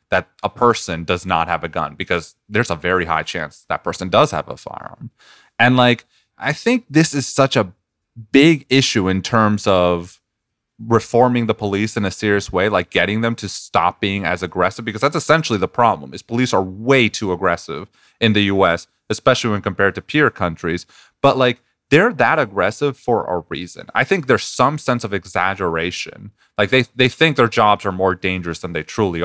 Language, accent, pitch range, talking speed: English, American, 95-120 Hz, 195 wpm